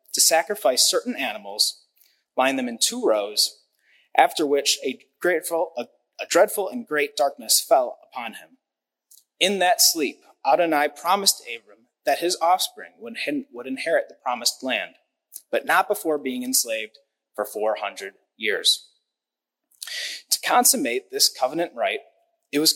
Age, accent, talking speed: 30-49, American, 130 wpm